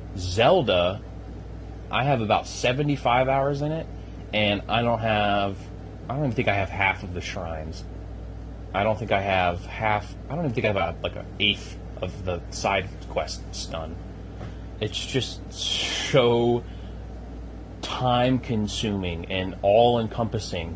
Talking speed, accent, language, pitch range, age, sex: 145 wpm, American, English, 90-110 Hz, 30-49, male